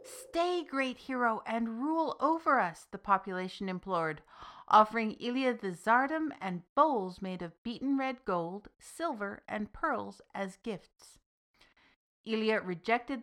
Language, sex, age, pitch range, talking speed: English, female, 50-69, 185-245 Hz, 125 wpm